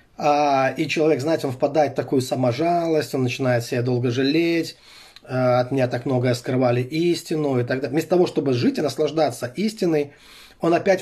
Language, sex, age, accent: Russian, male, 30-49, native